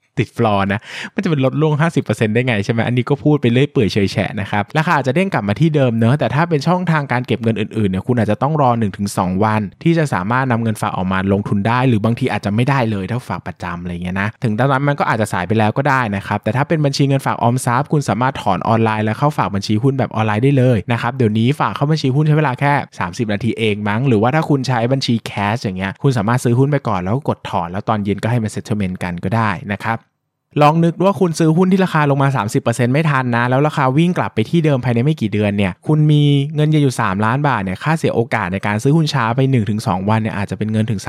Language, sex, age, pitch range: Thai, male, 20-39, 105-140 Hz